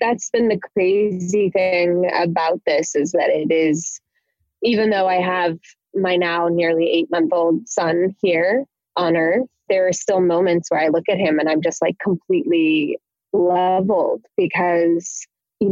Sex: female